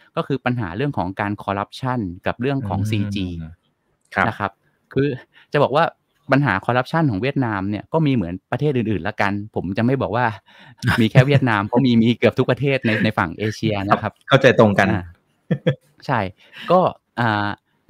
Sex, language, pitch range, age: male, Thai, 100-130 Hz, 20-39